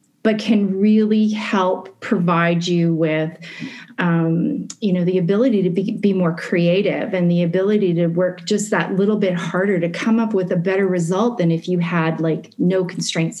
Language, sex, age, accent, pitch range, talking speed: English, female, 30-49, American, 170-205 Hz, 175 wpm